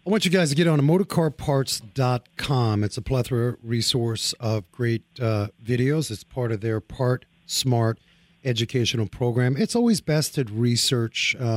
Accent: American